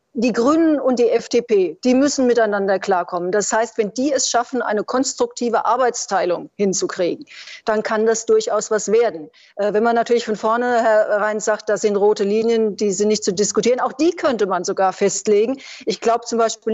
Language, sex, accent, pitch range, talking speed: German, female, German, 210-245 Hz, 185 wpm